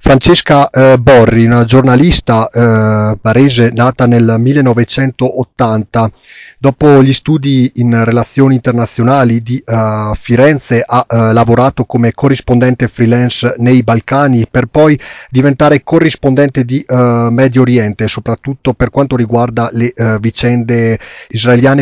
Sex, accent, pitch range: male, native, 115-135 Hz